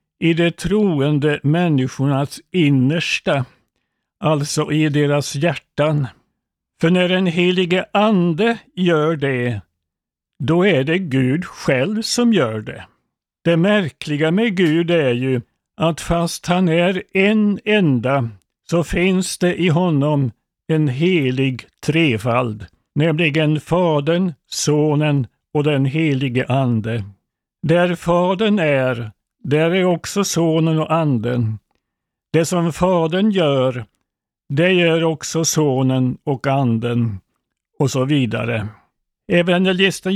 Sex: male